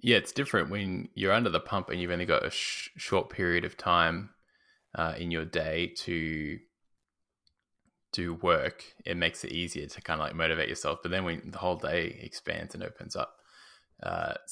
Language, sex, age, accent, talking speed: English, male, 20-39, Australian, 185 wpm